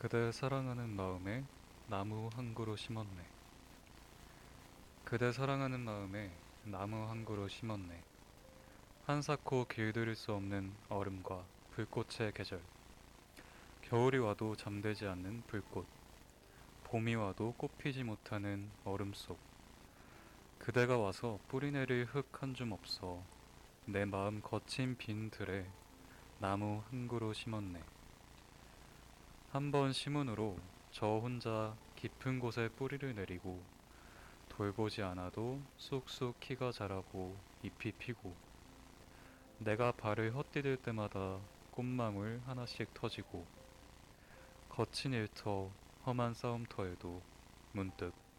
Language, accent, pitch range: Korean, native, 100-120 Hz